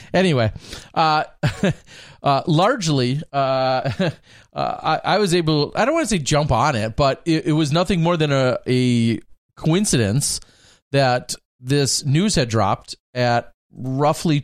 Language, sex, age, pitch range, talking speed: English, male, 40-59, 120-160 Hz, 145 wpm